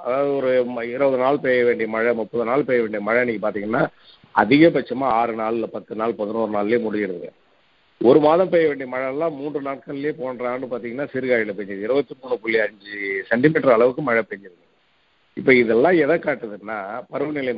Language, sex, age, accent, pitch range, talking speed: Tamil, male, 50-69, native, 115-145 Hz, 145 wpm